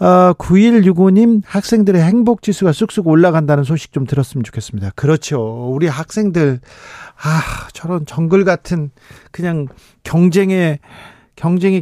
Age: 40-59